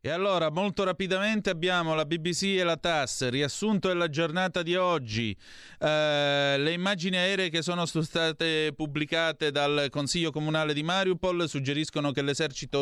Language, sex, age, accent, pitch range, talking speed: Italian, male, 30-49, native, 125-165 Hz, 150 wpm